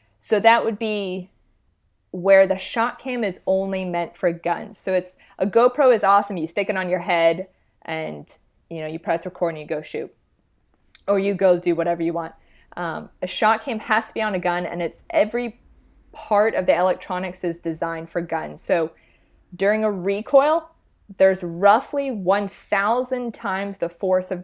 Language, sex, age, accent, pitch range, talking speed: English, female, 20-39, American, 170-210 Hz, 180 wpm